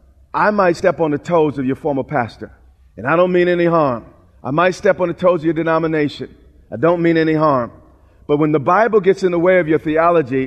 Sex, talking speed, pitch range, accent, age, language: male, 235 wpm, 130-210 Hz, American, 40-59, English